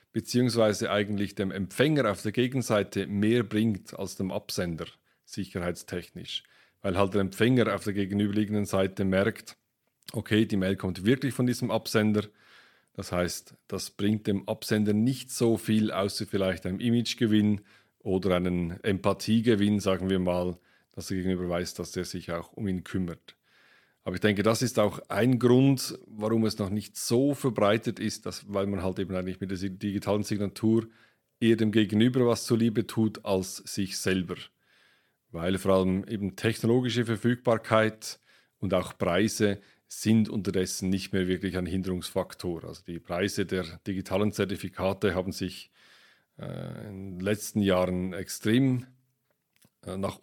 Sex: male